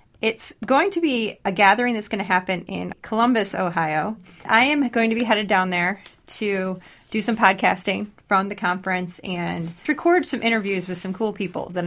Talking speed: 185 wpm